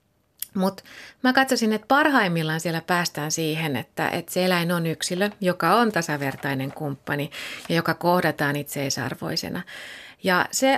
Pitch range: 155-190 Hz